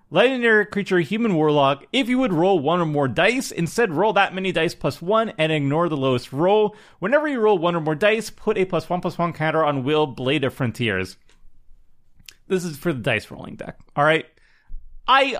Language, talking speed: English, 200 wpm